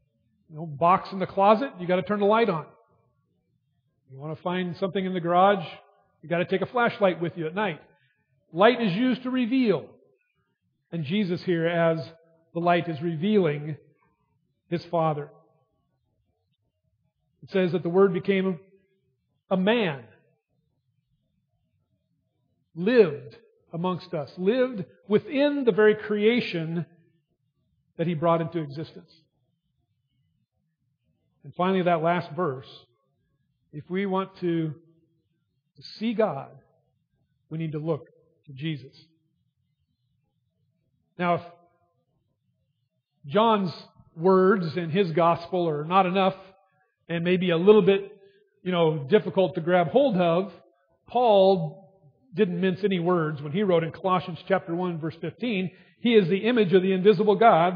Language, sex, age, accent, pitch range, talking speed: English, male, 50-69, American, 150-195 Hz, 135 wpm